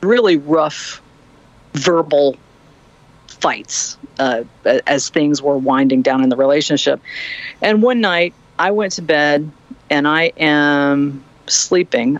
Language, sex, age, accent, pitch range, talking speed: English, female, 50-69, American, 140-185 Hz, 120 wpm